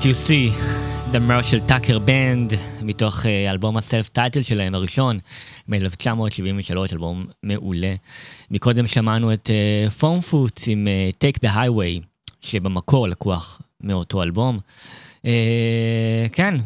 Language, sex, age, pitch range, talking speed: Hebrew, male, 20-39, 100-130 Hz, 115 wpm